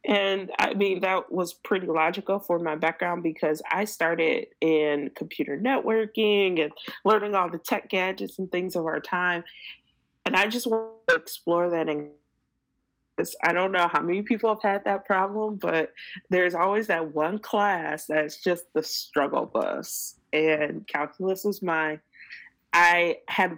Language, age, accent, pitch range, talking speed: English, 20-39, American, 165-210 Hz, 155 wpm